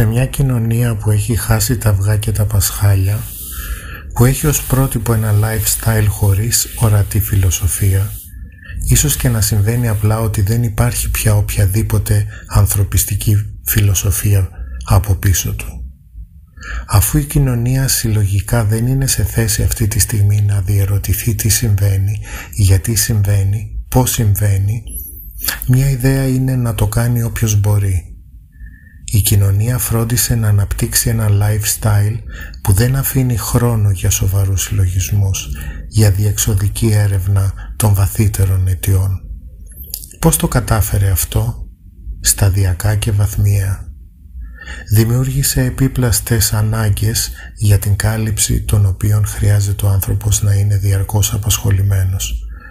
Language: Greek